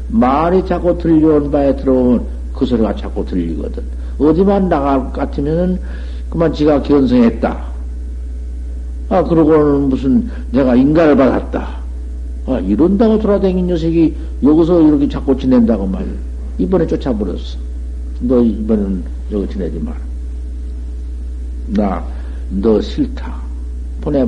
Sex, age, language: male, 60-79, Korean